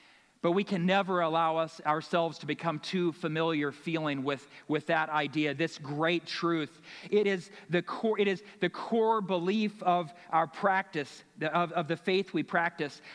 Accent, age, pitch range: American, 40-59, 165-205 Hz